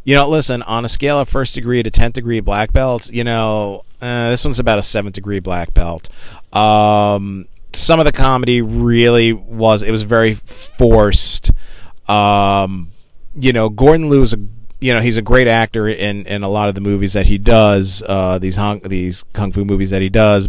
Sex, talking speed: male, 200 wpm